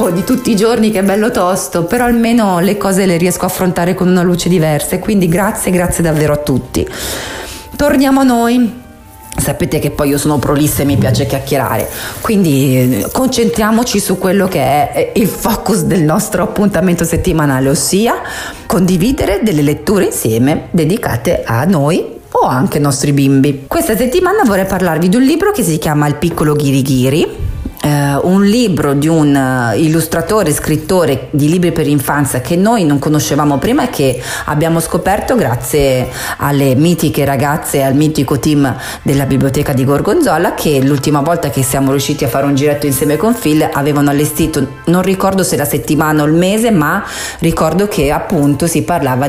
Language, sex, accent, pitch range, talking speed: Italian, female, native, 145-185 Hz, 170 wpm